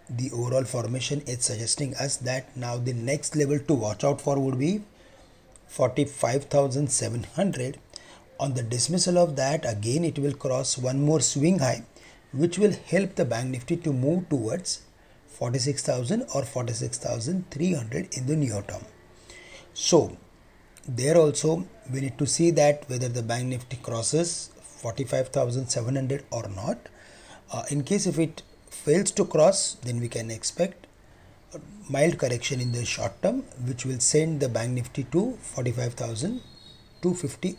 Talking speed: 145 wpm